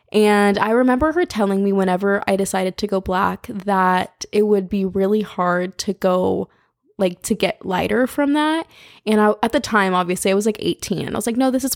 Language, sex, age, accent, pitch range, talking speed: English, female, 20-39, American, 190-230 Hz, 210 wpm